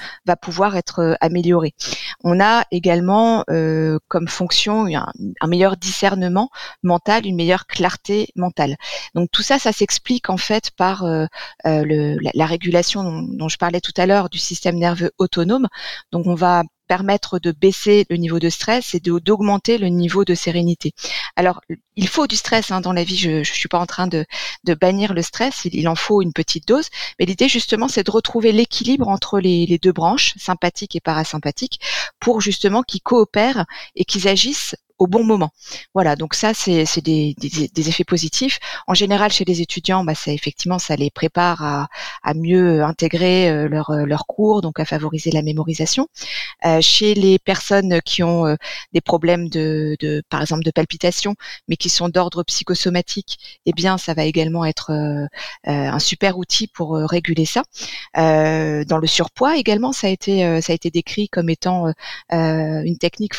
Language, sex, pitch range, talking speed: French, female, 160-200 Hz, 185 wpm